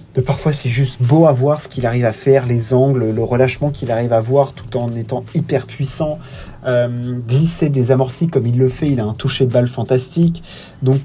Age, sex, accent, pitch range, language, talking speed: 30-49, male, French, 125-155 Hz, French, 215 wpm